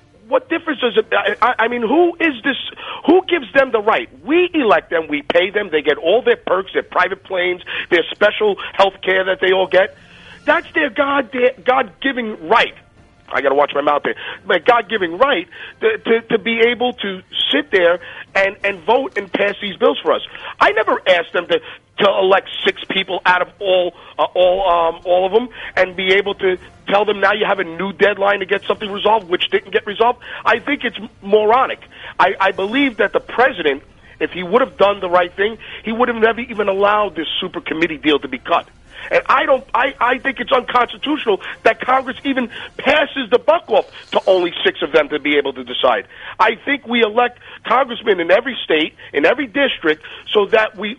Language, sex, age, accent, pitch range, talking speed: English, male, 40-59, American, 180-255 Hz, 205 wpm